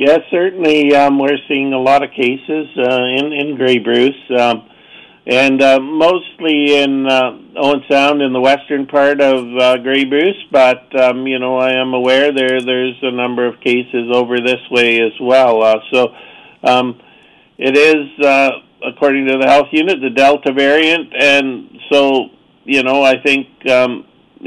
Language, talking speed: English, 170 wpm